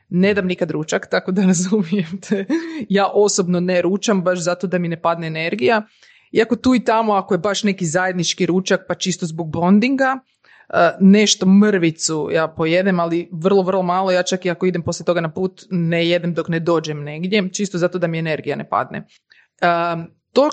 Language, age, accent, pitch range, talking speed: Croatian, 30-49, native, 165-200 Hz, 185 wpm